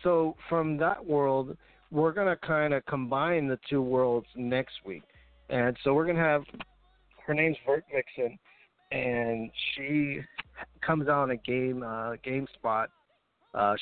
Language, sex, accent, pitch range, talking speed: English, male, American, 125-150 Hz, 145 wpm